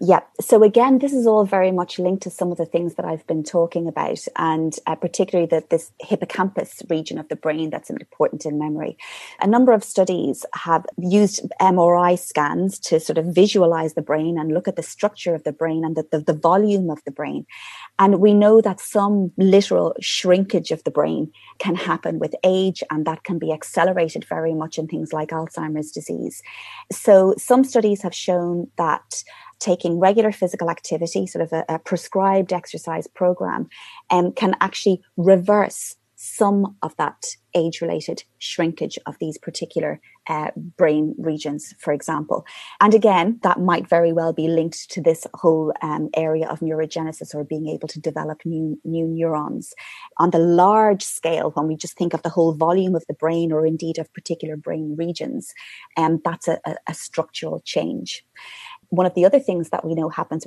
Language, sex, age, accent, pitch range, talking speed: English, female, 30-49, British, 160-195 Hz, 185 wpm